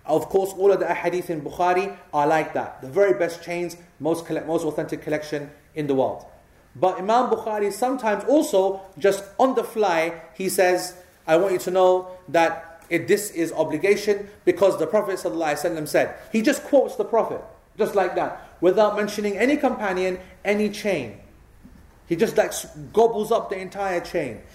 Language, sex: English, male